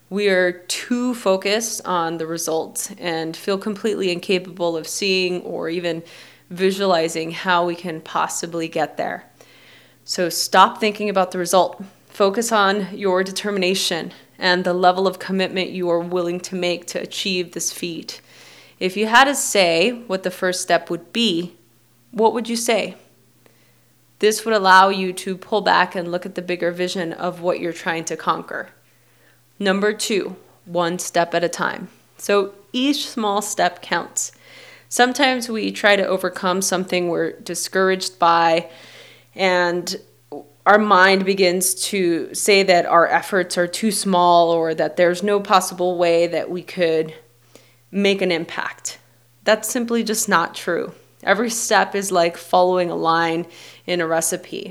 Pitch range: 170-200 Hz